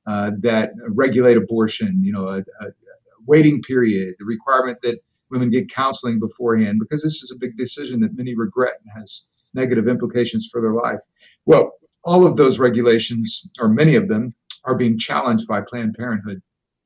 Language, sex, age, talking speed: English, male, 50-69, 170 wpm